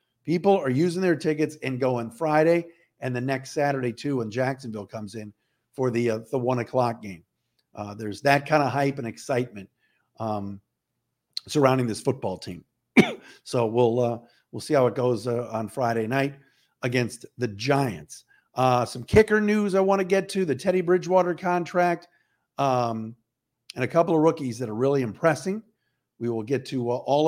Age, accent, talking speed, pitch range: 50-69, American, 180 wpm, 125-175 Hz